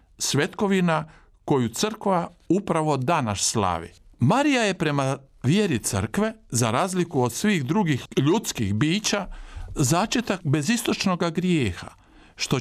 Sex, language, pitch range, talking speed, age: male, Croatian, 130-200 Hz, 105 wpm, 50-69